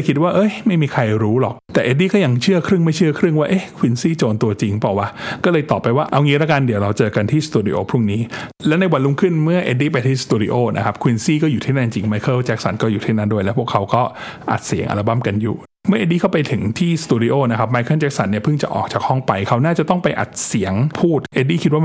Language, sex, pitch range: Thai, male, 110-150 Hz